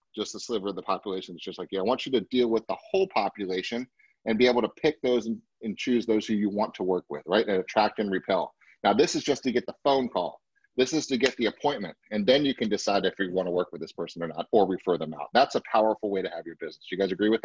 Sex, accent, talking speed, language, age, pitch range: male, American, 290 wpm, English, 30-49, 110-155 Hz